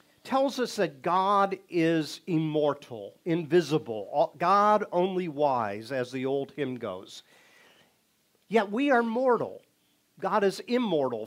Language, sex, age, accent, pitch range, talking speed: English, male, 50-69, American, 150-205 Hz, 115 wpm